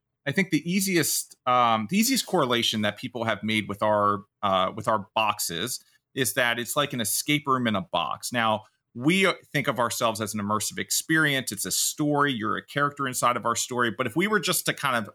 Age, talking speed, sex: 30-49, 220 wpm, male